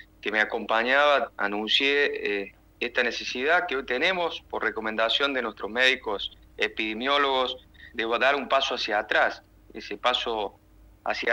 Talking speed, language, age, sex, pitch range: 130 wpm, Spanish, 30-49, male, 100-125 Hz